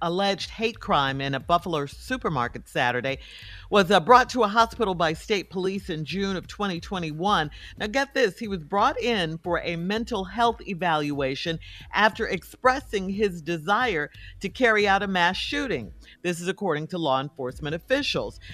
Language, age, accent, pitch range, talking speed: English, 50-69, American, 155-205 Hz, 160 wpm